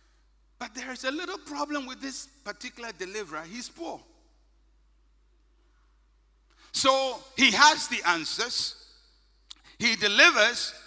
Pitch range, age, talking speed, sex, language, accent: 195-265 Hz, 60-79, 105 wpm, male, English, Nigerian